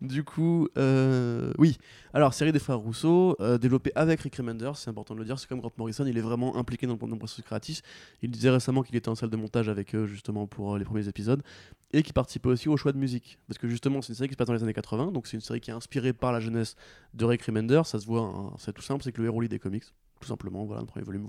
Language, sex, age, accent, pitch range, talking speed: French, male, 20-39, French, 105-130 Hz, 290 wpm